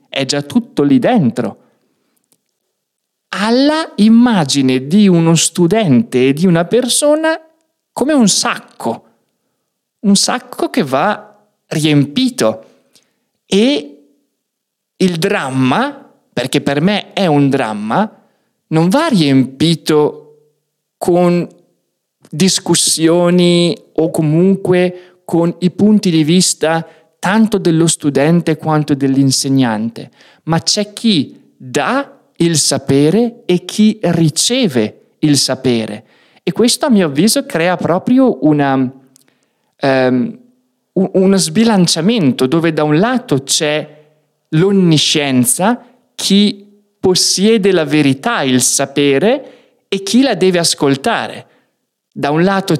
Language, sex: Italian, male